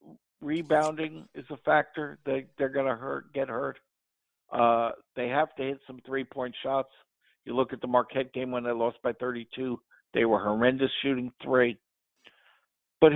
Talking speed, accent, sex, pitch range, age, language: 165 wpm, American, male, 130-160 Hz, 60-79, English